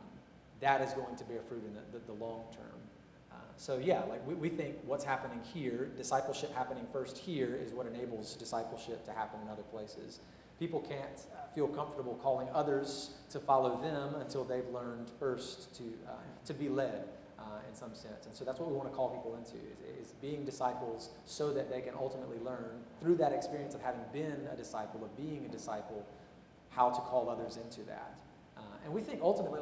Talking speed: 200 wpm